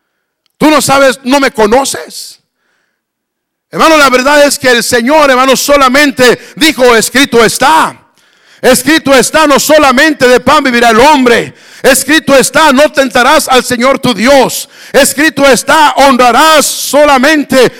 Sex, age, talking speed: male, 60-79, 130 wpm